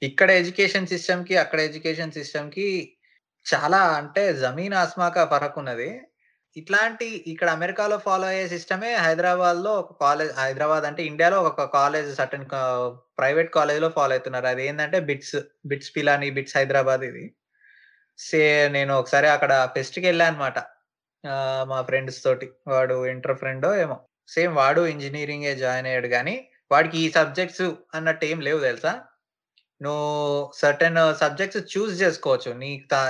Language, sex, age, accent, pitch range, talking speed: Telugu, male, 20-39, native, 140-185 Hz, 130 wpm